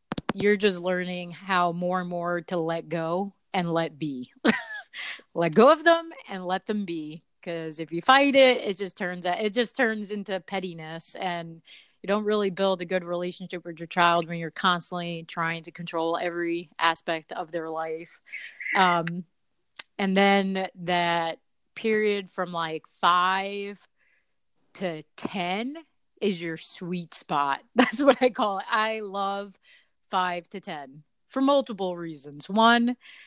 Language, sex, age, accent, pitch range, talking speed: English, female, 30-49, American, 170-230 Hz, 155 wpm